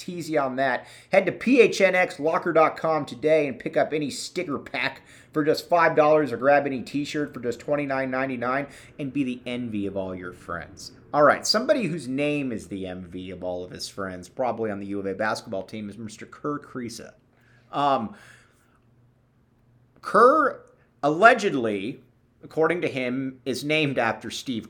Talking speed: 165 wpm